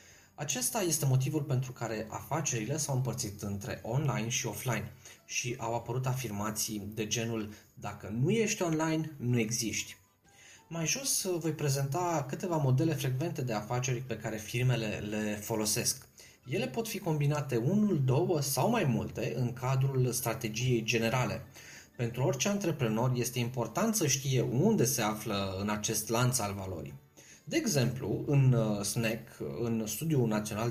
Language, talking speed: Romanian, 145 wpm